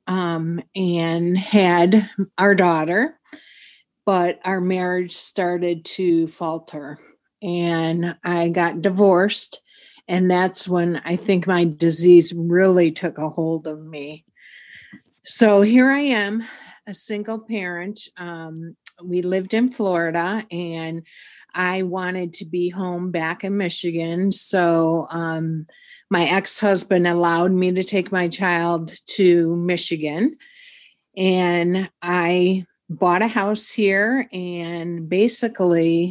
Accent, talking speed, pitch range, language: American, 115 wpm, 165-200 Hz, English